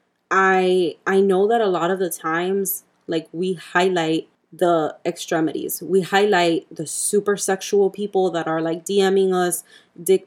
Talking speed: 150 wpm